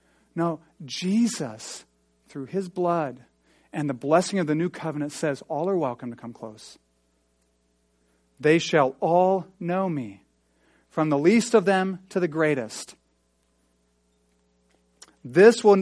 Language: English